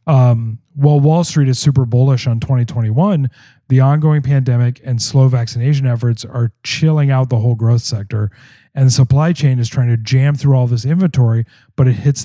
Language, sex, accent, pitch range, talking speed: English, male, American, 115-140 Hz, 185 wpm